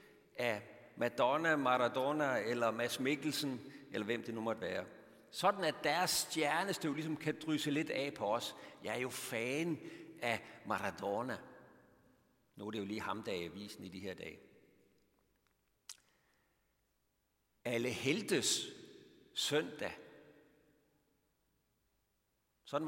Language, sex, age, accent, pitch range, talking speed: Danish, male, 60-79, native, 120-155 Hz, 120 wpm